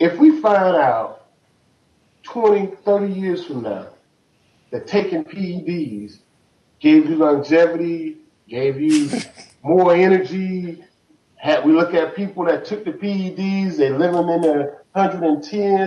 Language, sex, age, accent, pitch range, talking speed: English, male, 40-59, American, 170-265 Hz, 120 wpm